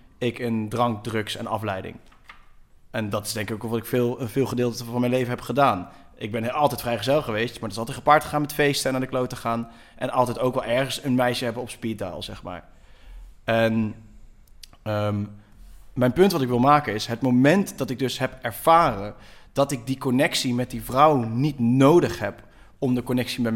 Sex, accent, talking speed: male, Dutch, 215 wpm